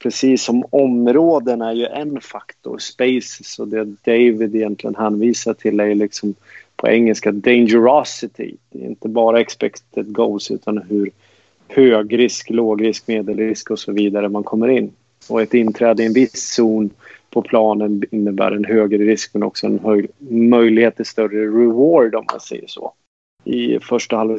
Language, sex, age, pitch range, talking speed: Swedish, male, 30-49, 105-120 Hz, 160 wpm